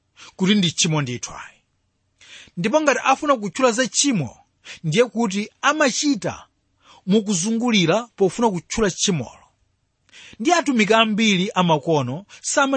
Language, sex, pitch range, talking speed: English, male, 150-230 Hz, 110 wpm